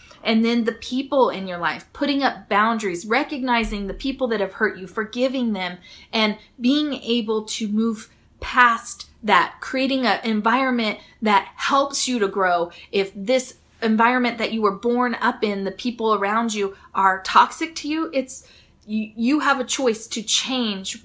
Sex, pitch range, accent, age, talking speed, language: female, 210-255 Hz, American, 30-49, 160 wpm, English